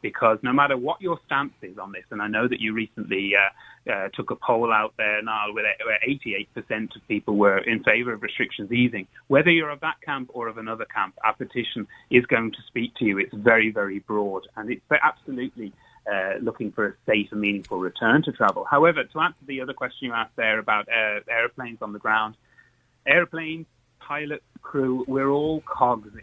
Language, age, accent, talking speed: English, 30-49, British, 200 wpm